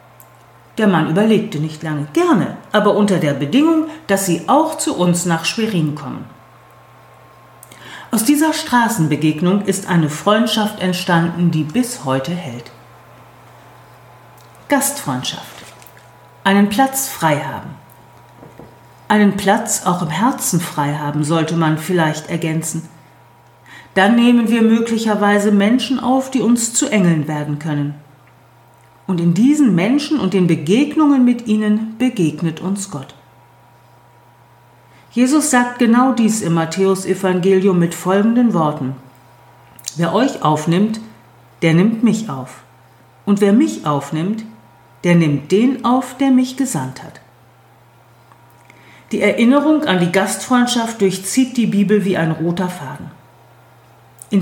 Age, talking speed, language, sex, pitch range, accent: 40-59, 120 wpm, German, female, 150-225 Hz, German